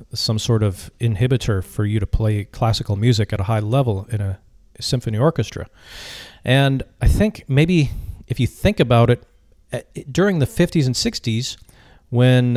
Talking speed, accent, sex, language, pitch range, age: 160 wpm, American, male, English, 100-125 Hz, 40-59